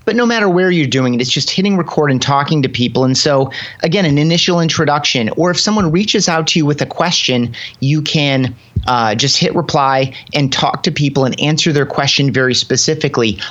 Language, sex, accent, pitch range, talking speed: English, male, American, 130-160 Hz, 210 wpm